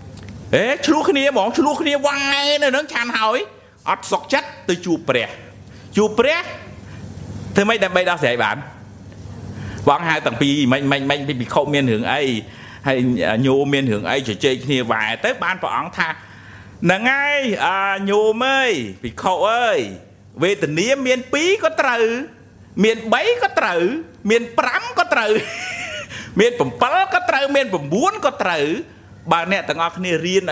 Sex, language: male, English